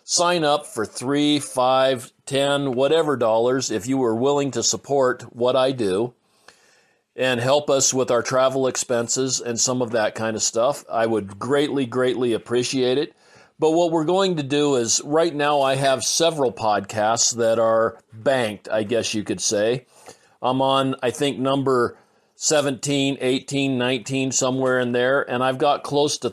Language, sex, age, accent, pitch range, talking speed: English, male, 40-59, American, 115-135 Hz, 170 wpm